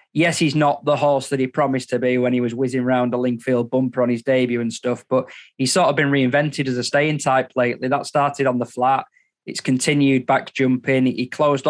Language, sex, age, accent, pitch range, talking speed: English, male, 20-39, British, 125-140 Hz, 230 wpm